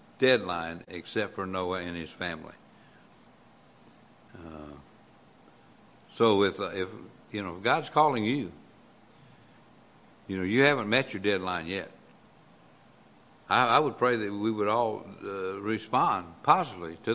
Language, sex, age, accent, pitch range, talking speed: English, male, 60-79, American, 100-125 Hz, 135 wpm